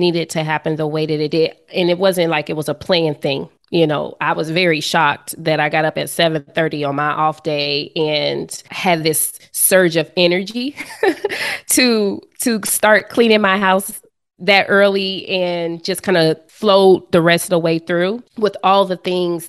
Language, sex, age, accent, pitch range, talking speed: English, female, 20-39, American, 160-195 Hz, 195 wpm